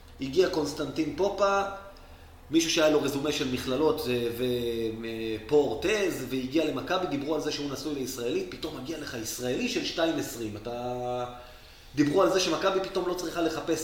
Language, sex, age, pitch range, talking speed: Hebrew, male, 30-49, 120-165 Hz, 150 wpm